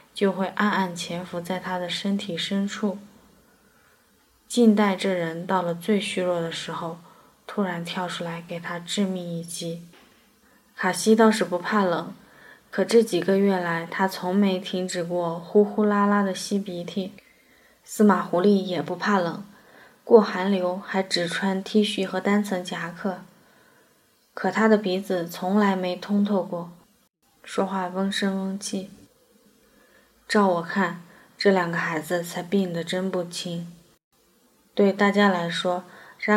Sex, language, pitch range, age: female, Chinese, 170-200 Hz, 20-39